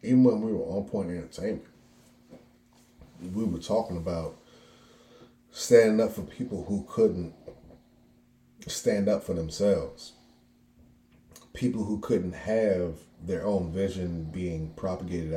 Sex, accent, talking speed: male, American, 115 wpm